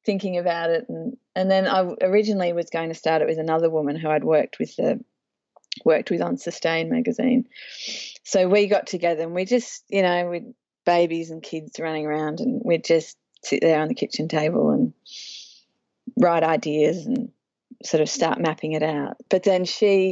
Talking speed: 190 wpm